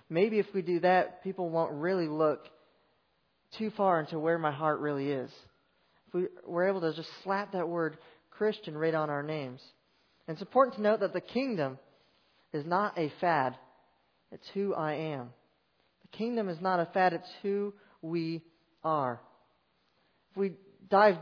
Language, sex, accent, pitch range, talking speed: English, male, American, 150-195 Hz, 170 wpm